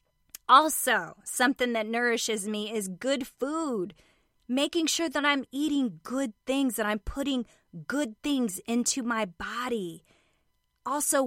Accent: American